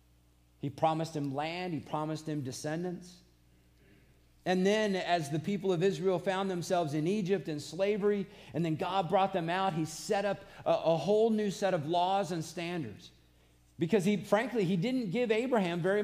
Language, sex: English, male